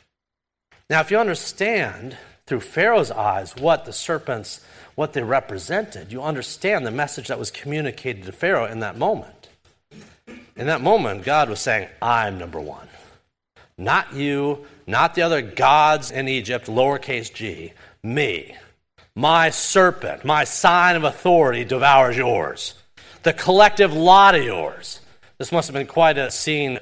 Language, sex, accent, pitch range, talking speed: English, male, American, 140-195 Hz, 145 wpm